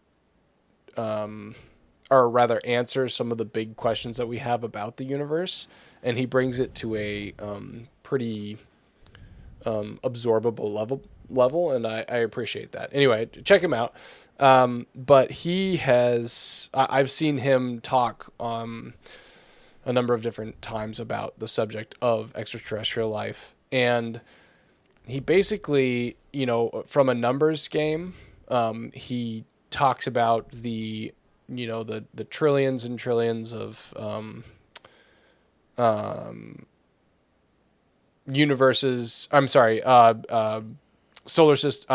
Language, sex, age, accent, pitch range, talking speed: English, male, 20-39, American, 115-130 Hz, 125 wpm